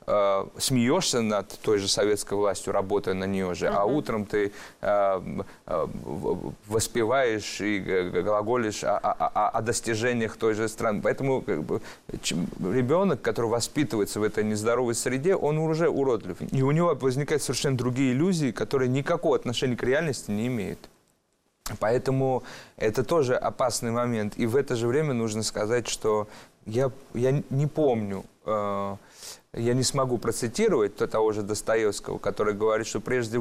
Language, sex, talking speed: Russian, male, 135 wpm